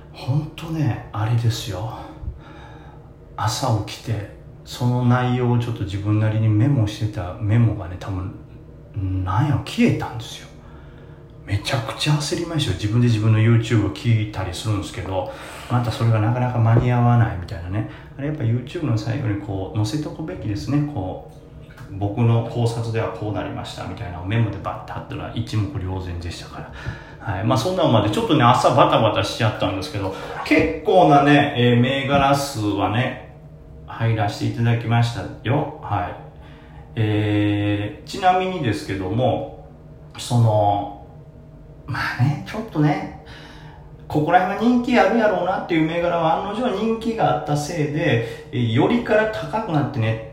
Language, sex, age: Japanese, male, 40-59